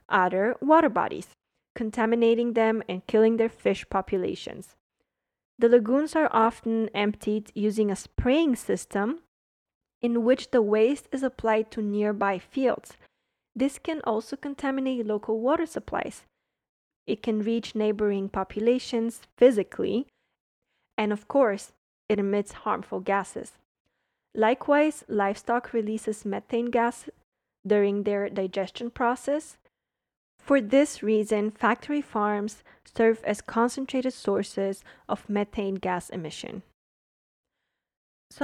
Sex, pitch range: female, 210-250 Hz